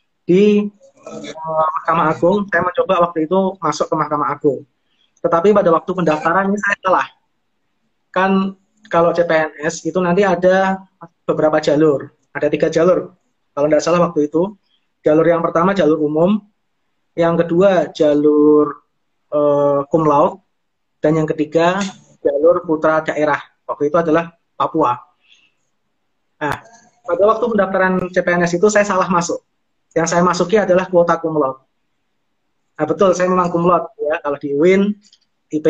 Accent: native